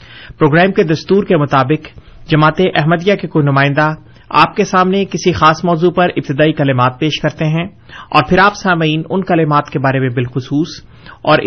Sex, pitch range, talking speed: male, 140-175 Hz, 175 wpm